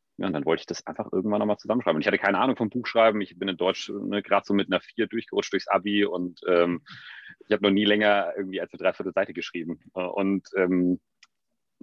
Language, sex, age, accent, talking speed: German, male, 30-49, German, 225 wpm